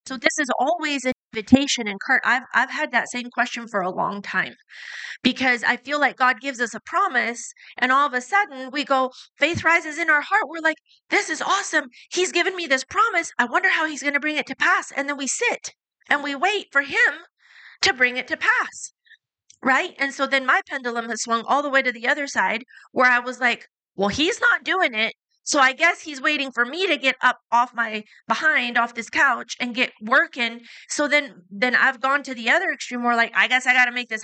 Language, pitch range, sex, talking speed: English, 245-310 Hz, female, 235 wpm